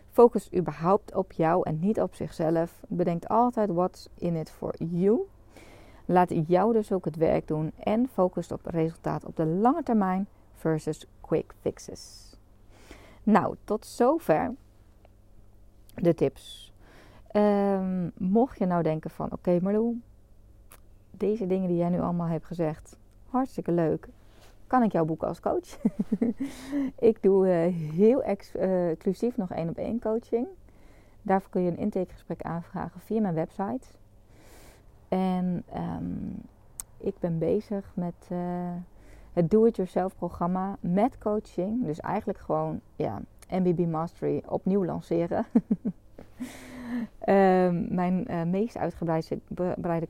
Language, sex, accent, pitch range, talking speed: Dutch, female, Dutch, 160-210 Hz, 125 wpm